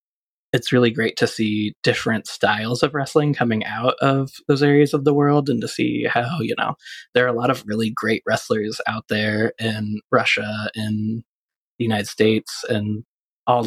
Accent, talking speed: American, 180 wpm